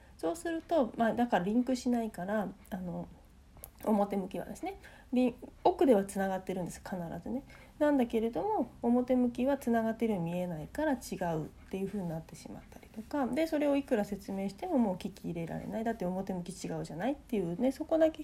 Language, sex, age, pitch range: Japanese, female, 40-59, 195-260 Hz